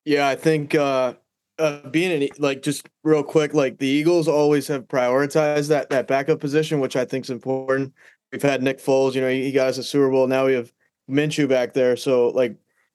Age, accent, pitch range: 20-39, American, 130-145 Hz